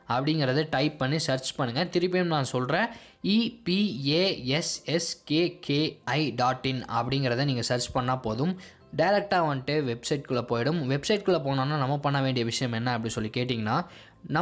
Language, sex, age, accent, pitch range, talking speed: Tamil, male, 20-39, native, 125-160 Hz, 120 wpm